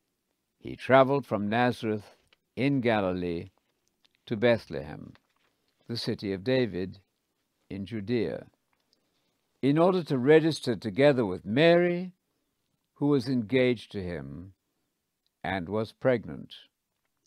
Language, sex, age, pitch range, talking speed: English, male, 60-79, 110-145 Hz, 100 wpm